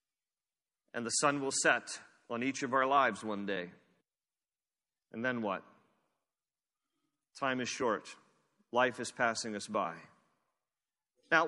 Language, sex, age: English, male, 40-59